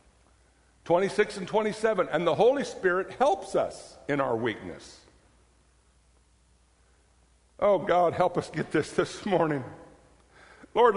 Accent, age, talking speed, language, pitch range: American, 60-79, 115 wpm, English, 170-235 Hz